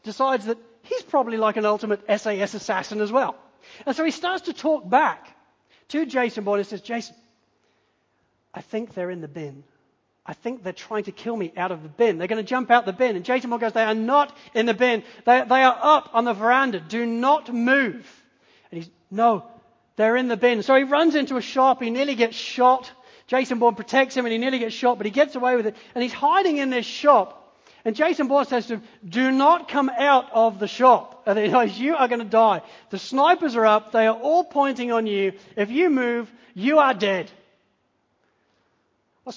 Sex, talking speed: male, 215 wpm